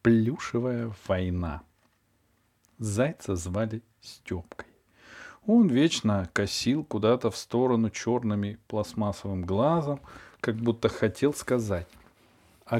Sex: male